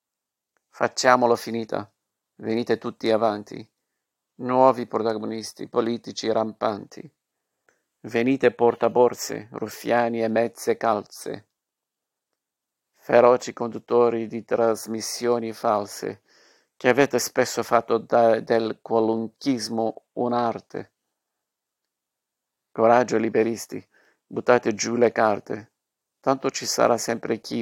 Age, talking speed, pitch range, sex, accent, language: 50-69, 85 wpm, 115-125 Hz, male, native, Italian